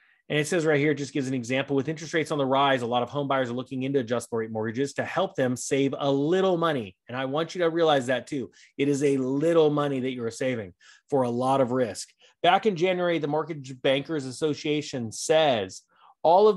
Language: English